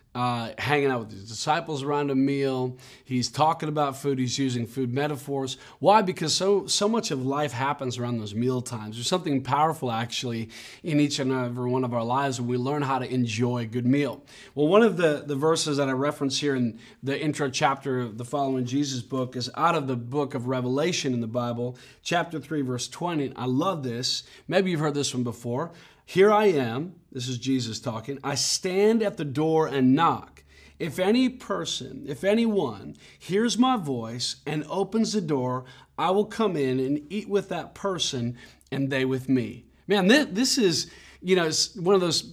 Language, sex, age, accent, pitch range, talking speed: English, male, 30-49, American, 130-165 Hz, 195 wpm